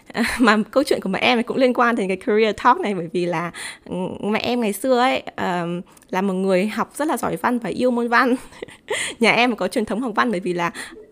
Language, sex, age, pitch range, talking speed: Vietnamese, female, 20-39, 190-250 Hz, 245 wpm